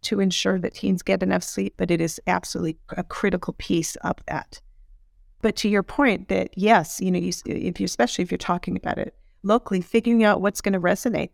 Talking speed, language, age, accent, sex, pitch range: 210 wpm, English, 40-59, American, female, 170-210 Hz